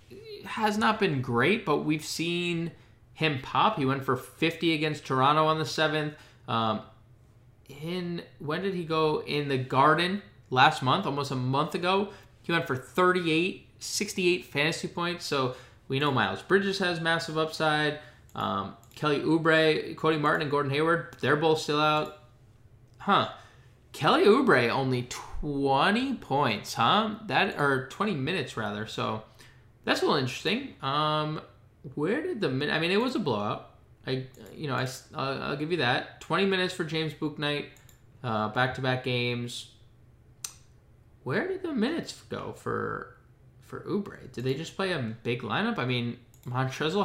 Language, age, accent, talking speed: English, 20-39, American, 155 wpm